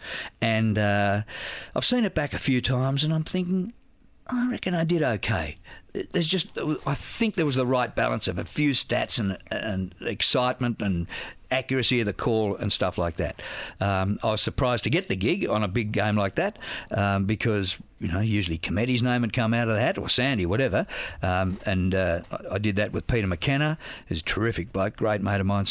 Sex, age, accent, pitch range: male, 50-69, Australian, 100-130 Hz